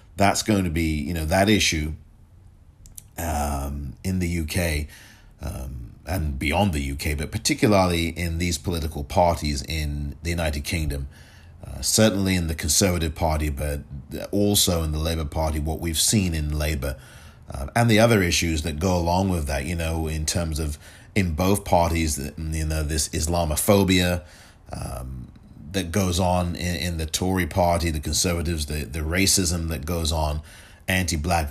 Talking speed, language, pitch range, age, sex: 160 wpm, English, 75-95 Hz, 40-59, male